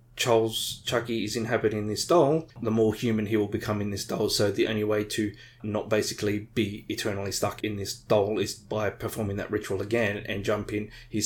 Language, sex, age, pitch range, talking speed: English, male, 20-39, 105-120 Hz, 195 wpm